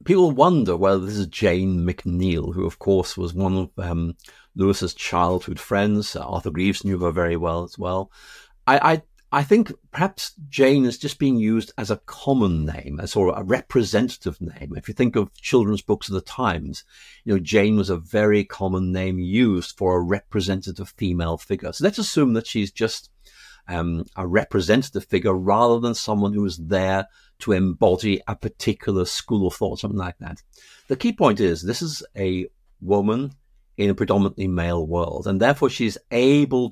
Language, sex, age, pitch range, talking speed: English, male, 50-69, 90-115 Hz, 185 wpm